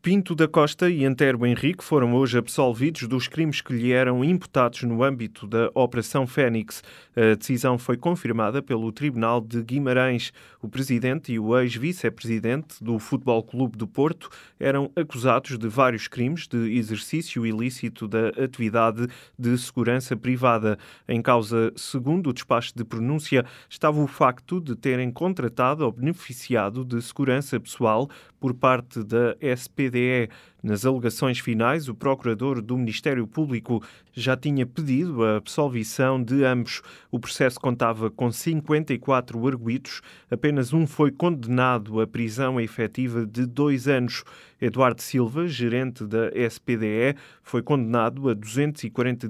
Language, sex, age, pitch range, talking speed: Portuguese, male, 20-39, 115-140 Hz, 140 wpm